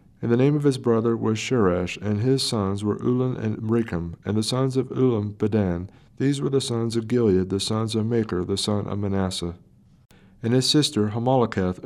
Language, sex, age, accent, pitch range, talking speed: English, male, 40-59, American, 95-120 Hz, 195 wpm